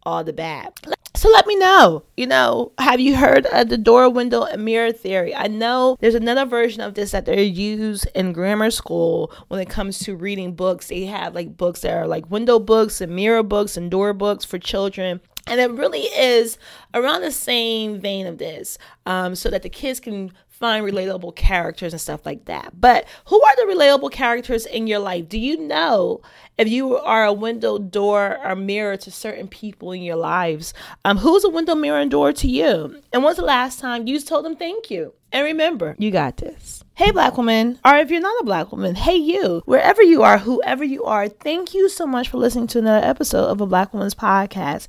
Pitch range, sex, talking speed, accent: 195-280 Hz, female, 215 wpm, American